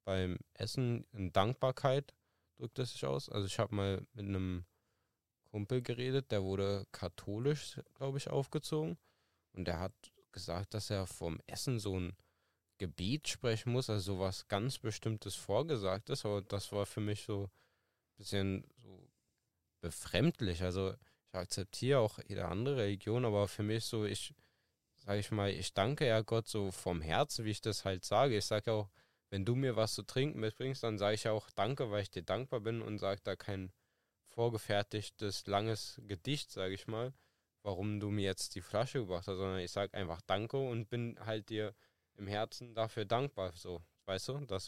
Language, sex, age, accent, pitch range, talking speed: German, male, 10-29, German, 95-115 Hz, 180 wpm